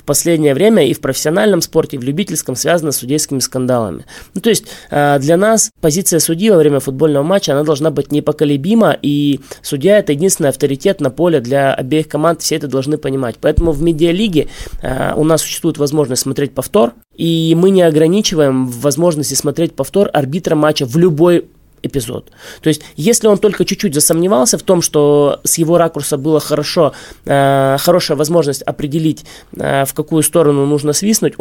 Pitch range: 145-170 Hz